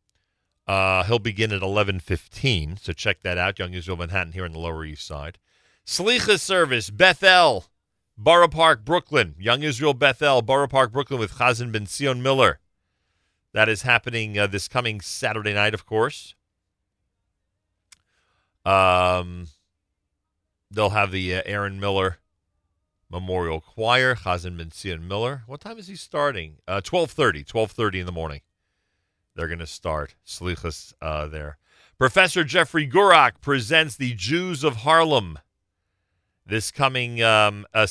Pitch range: 90-120 Hz